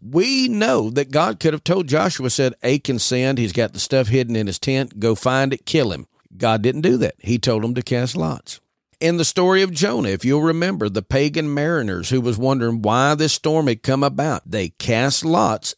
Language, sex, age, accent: English, male, 50-69, American